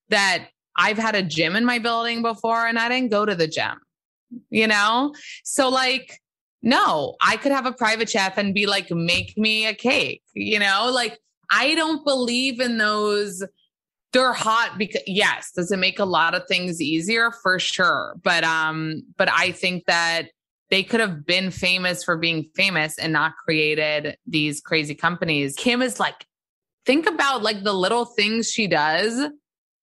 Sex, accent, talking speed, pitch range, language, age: female, American, 175 wpm, 165-220 Hz, English, 20-39